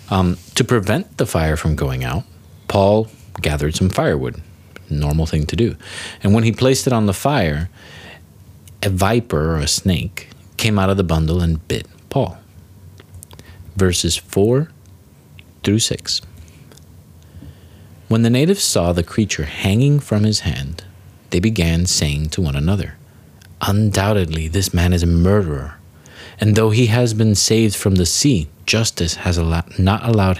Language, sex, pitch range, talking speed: English, male, 85-105 Hz, 150 wpm